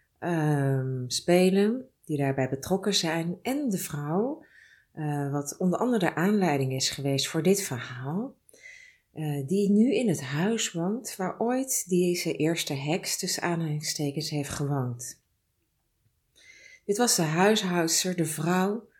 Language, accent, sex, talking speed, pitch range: Dutch, Dutch, female, 130 wpm, 150-200 Hz